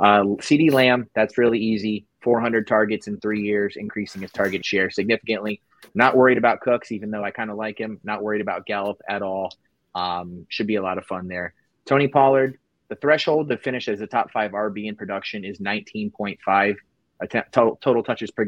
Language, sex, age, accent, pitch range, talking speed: English, male, 30-49, American, 100-120 Hz, 200 wpm